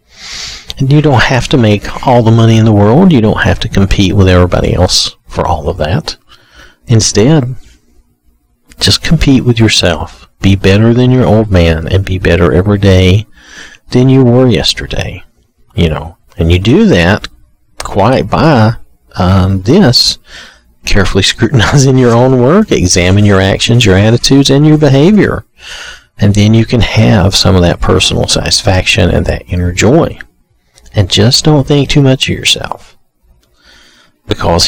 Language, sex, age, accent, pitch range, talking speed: English, male, 50-69, American, 90-120 Hz, 155 wpm